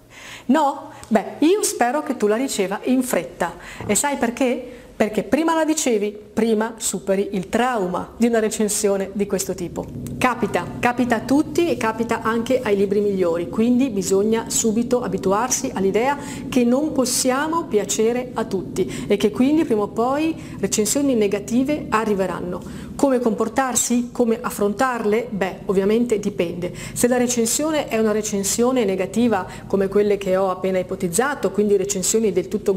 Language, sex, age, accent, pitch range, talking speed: Italian, female, 40-59, native, 195-240 Hz, 150 wpm